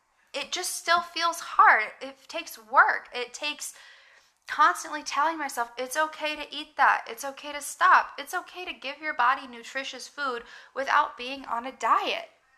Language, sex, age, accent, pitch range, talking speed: English, female, 10-29, American, 235-295 Hz, 165 wpm